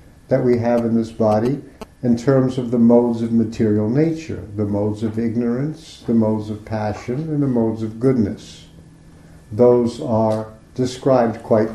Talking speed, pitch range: 160 wpm, 110-130 Hz